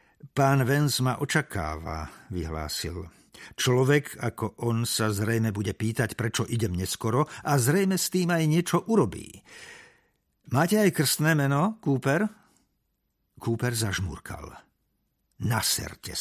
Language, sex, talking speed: Slovak, male, 110 wpm